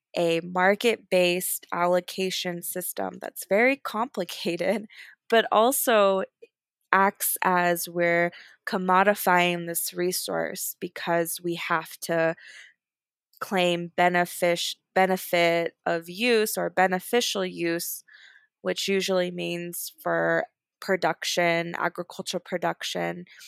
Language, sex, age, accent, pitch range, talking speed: English, female, 20-39, American, 170-200 Hz, 85 wpm